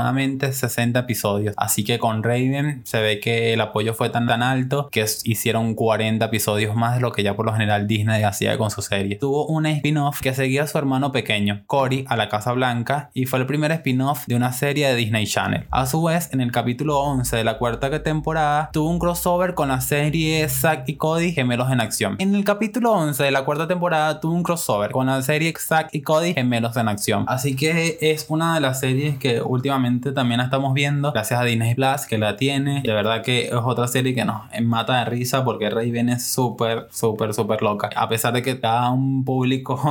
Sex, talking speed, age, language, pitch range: male, 220 wpm, 20-39, Spanish, 115-145 Hz